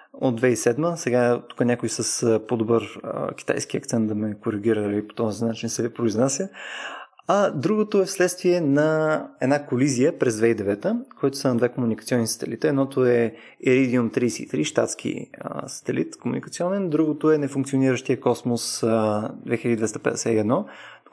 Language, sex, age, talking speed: Bulgarian, male, 20-39, 130 wpm